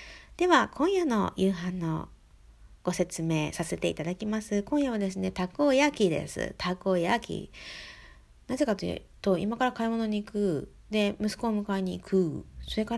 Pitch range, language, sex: 180-230 Hz, Japanese, female